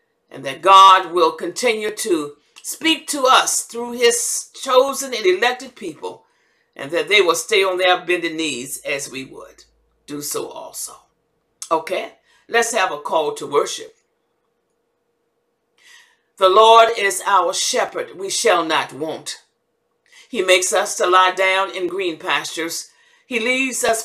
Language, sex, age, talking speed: English, female, 50-69, 145 wpm